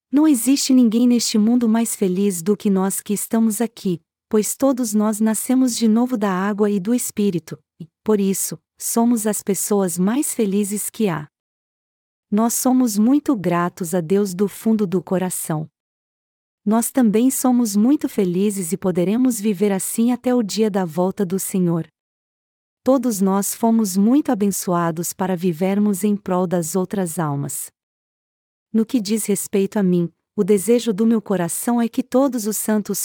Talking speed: 160 wpm